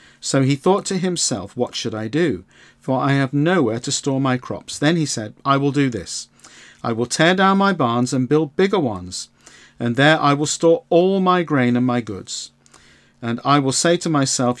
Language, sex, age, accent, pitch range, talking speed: English, male, 50-69, British, 125-155 Hz, 210 wpm